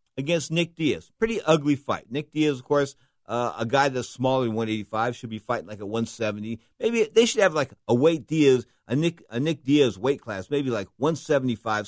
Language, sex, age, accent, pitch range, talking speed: English, male, 50-69, American, 110-155 Hz, 205 wpm